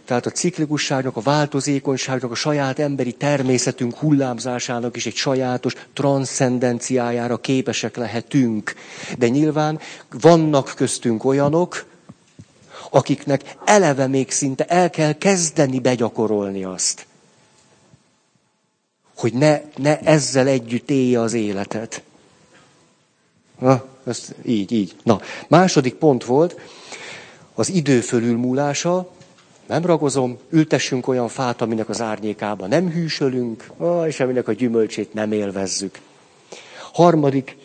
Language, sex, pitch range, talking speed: Hungarian, male, 115-140 Hz, 105 wpm